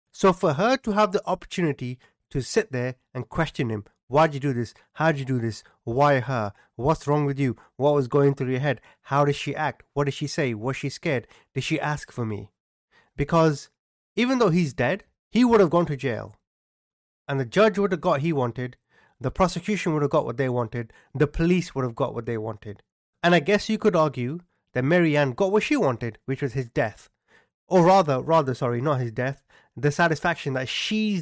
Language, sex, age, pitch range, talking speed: English, male, 30-49, 125-170 Hz, 220 wpm